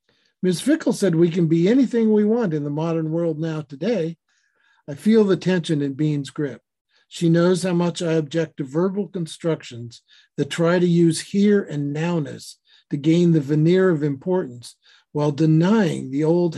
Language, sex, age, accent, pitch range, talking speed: English, male, 50-69, American, 145-185 Hz, 175 wpm